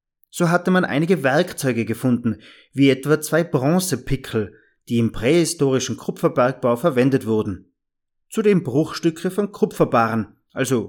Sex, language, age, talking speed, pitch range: male, German, 30-49, 115 wpm, 115-165 Hz